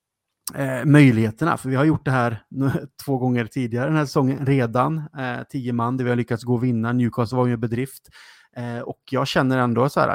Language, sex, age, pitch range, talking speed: Swedish, male, 30-49, 120-145 Hz, 220 wpm